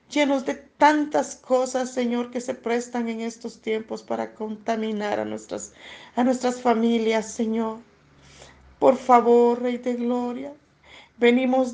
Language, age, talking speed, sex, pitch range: Spanish, 50-69, 130 wpm, female, 235-265 Hz